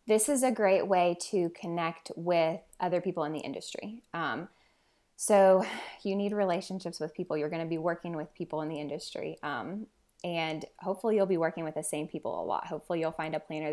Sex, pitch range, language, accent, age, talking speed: female, 160-195 Hz, English, American, 20-39, 205 wpm